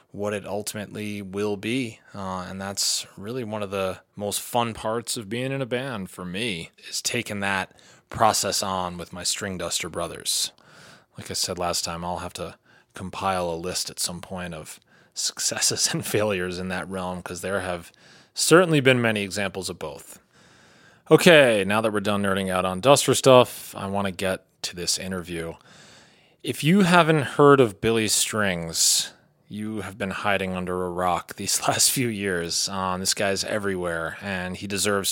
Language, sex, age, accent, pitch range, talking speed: English, male, 30-49, American, 90-110 Hz, 180 wpm